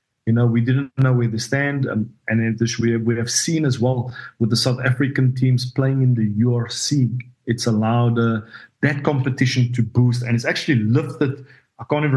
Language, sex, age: English, male, 40-59